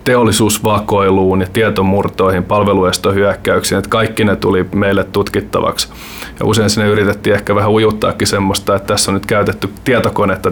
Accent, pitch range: native, 100-110 Hz